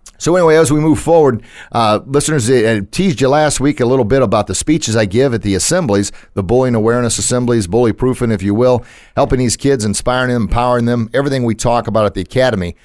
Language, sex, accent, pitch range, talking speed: English, male, American, 105-135 Hz, 220 wpm